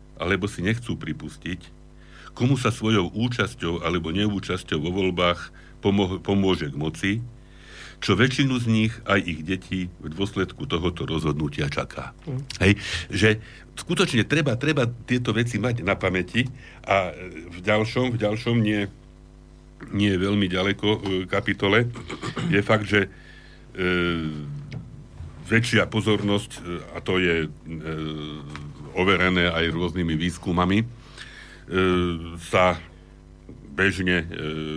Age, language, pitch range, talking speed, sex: 60-79, Slovak, 85-105 Hz, 110 wpm, male